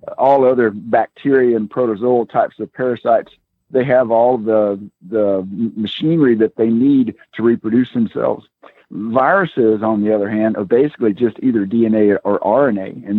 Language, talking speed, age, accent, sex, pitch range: English, 150 wpm, 50-69, American, male, 105-125 Hz